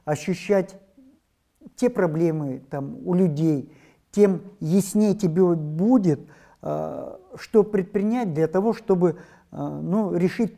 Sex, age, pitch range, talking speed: male, 50-69, 155-195 Hz, 90 wpm